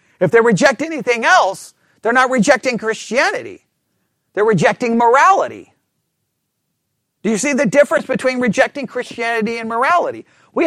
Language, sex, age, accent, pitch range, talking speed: English, male, 40-59, American, 210-295 Hz, 130 wpm